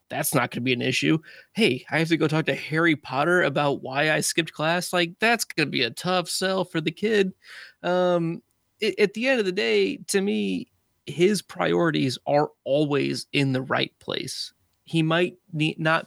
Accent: American